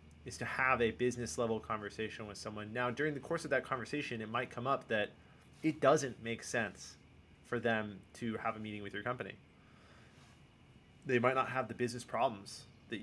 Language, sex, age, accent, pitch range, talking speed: English, male, 30-49, American, 105-125 Hz, 195 wpm